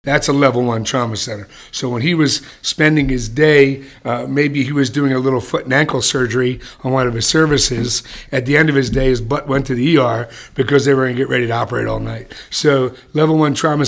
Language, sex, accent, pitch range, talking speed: English, male, American, 130-150 Hz, 240 wpm